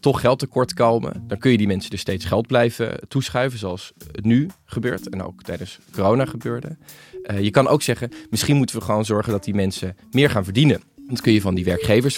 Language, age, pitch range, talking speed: Dutch, 20-39, 100-135 Hz, 220 wpm